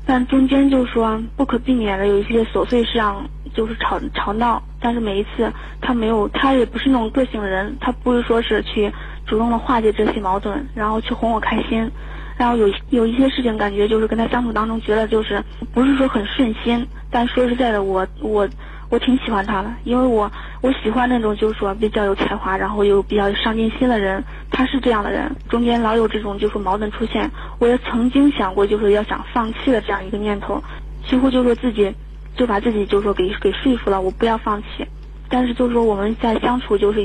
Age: 20-39